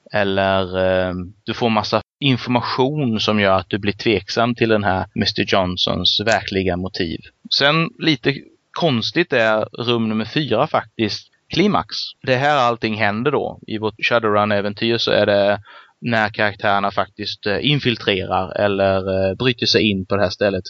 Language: Swedish